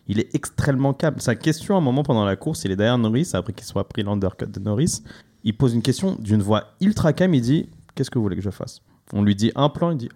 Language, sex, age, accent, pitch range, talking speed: French, male, 30-49, French, 105-140 Hz, 280 wpm